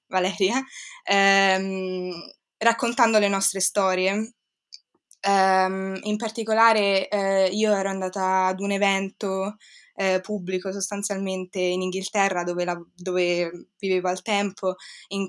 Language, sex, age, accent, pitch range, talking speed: Italian, female, 20-39, native, 185-205 Hz, 110 wpm